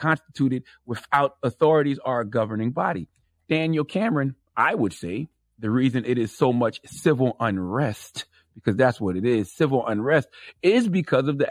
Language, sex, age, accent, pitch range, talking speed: English, male, 30-49, American, 110-190 Hz, 160 wpm